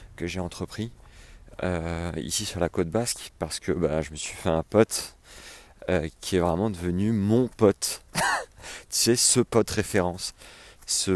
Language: French